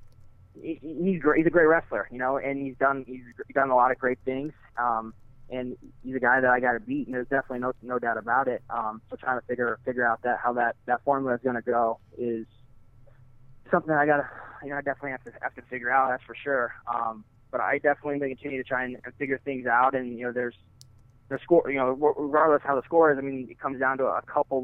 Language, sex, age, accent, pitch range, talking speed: English, male, 20-39, American, 120-140 Hz, 250 wpm